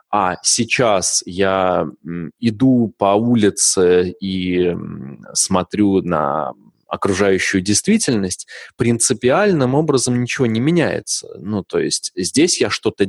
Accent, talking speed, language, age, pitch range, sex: native, 100 wpm, Russian, 20-39, 90-120 Hz, male